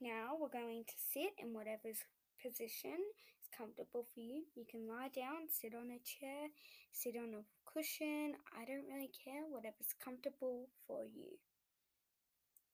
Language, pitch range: English, 225-300 Hz